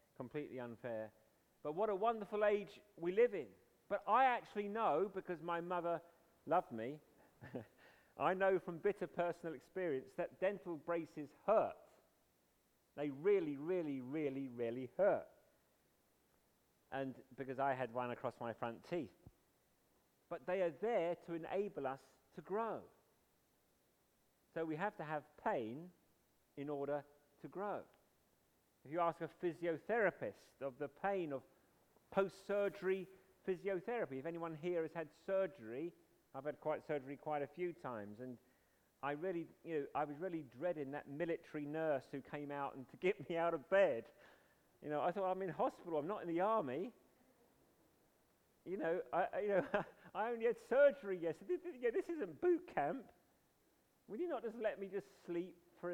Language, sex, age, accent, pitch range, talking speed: English, male, 40-59, British, 145-195 Hz, 155 wpm